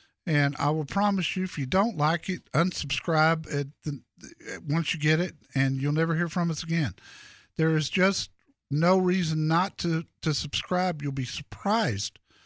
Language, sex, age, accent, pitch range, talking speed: English, male, 50-69, American, 135-180 Hz, 175 wpm